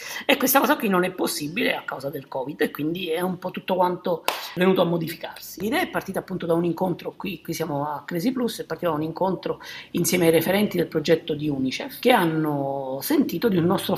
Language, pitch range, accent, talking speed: Italian, 155-225 Hz, native, 225 wpm